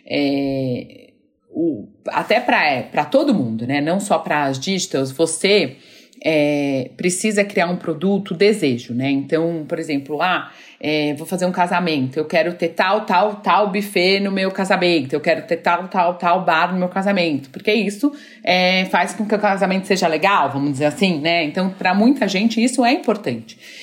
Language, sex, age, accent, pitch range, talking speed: Portuguese, female, 30-49, Brazilian, 165-230 Hz, 180 wpm